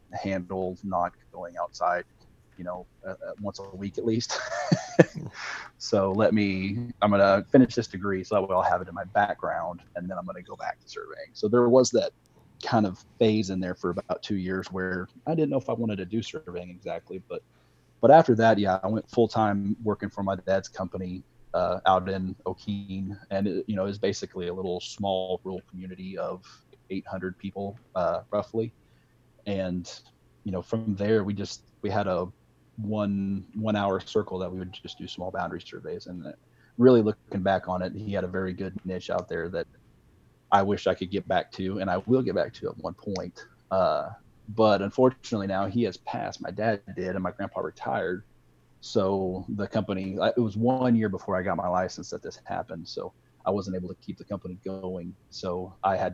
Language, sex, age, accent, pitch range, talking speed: English, male, 30-49, American, 95-110 Hz, 205 wpm